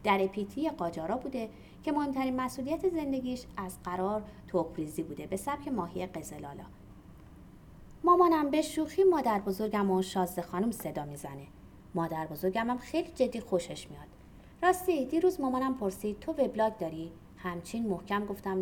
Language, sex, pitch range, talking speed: Persian, female, 175-265 Hz, 125 wpm